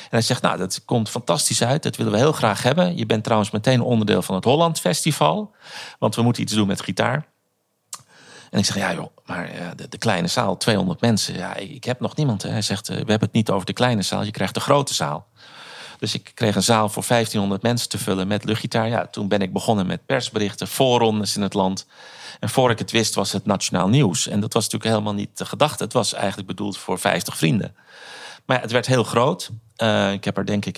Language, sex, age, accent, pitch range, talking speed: Dutch, male, 40-59, Dutch, 100-120 Hz, 235 wpm